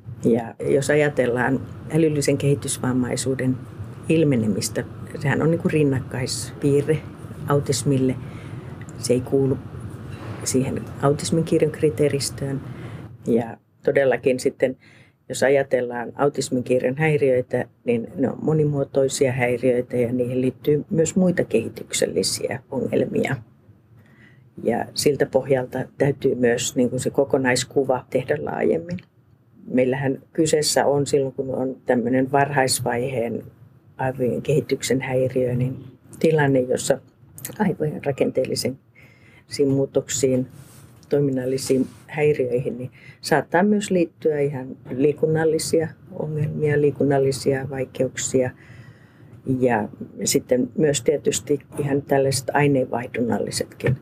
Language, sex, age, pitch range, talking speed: Finnish, female, 50-69, 125-145 Hz, 90 wpm